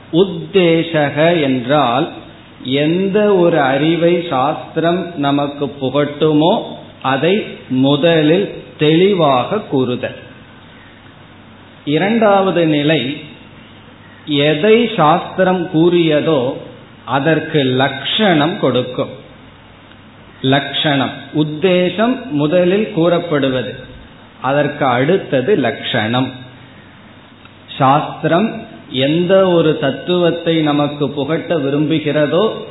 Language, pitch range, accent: Tamil, 130-160 Hz, native